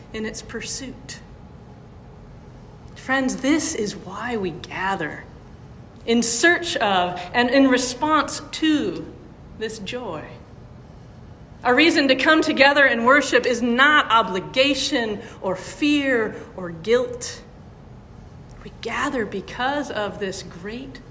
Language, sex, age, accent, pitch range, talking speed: English, female, 40-59, American, 180-270 Hz, 110 wpm